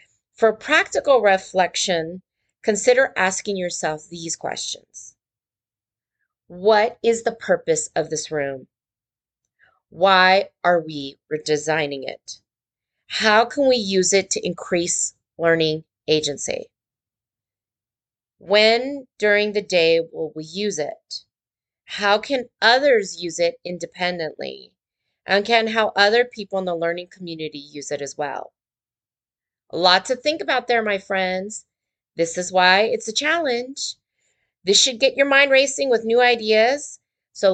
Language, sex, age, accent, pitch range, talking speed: English, female, 30-49, American, 165-230 Hz, 125 wpm